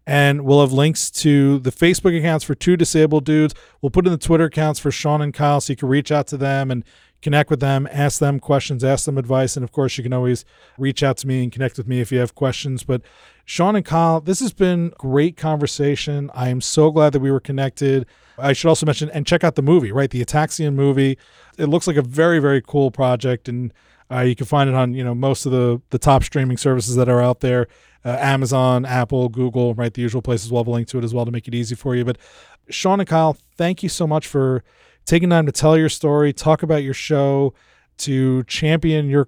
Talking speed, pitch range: 240 wpm, 125-150 Hz